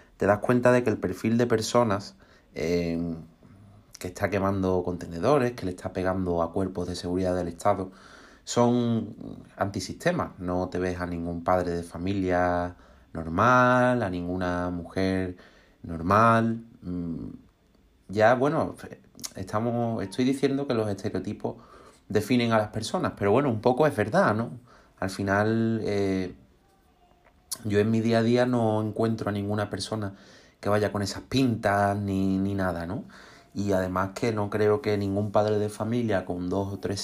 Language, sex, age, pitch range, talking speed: Spanish, male, 30-49, 90-110 Hz, 155 wpm